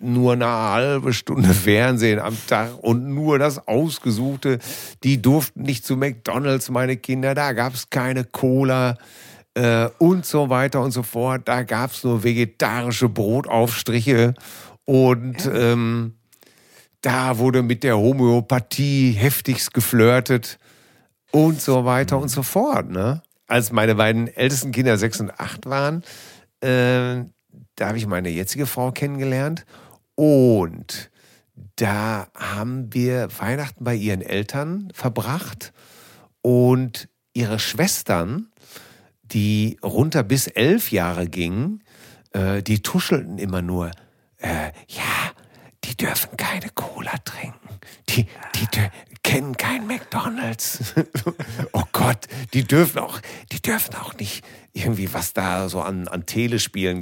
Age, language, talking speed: 50-69, German, 125 wpm